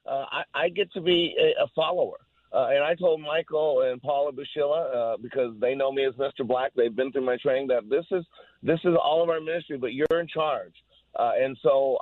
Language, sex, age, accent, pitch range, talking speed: English, male, 50-69, American, 135-175 Hz, 230 wpm